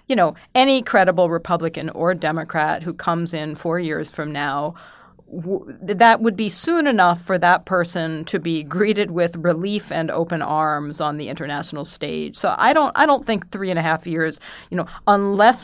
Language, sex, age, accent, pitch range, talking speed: English, female, 40-59, American, 155-205 Hz, 190 wpm